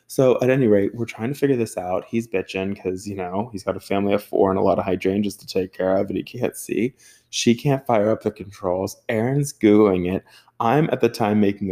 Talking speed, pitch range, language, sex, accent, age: 245 wpm, 95-120 Hz, English, male, American, 20-39